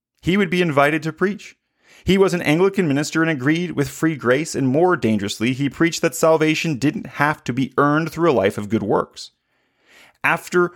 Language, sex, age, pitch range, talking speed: English, male, 30-49, 130-165 Hz, 195 wpm